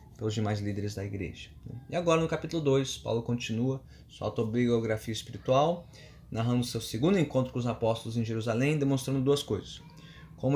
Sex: male